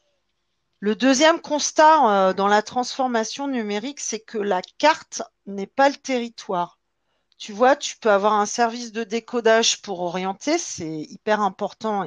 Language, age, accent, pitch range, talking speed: French, 40-59, French, 195-245 Hz, 150 wpm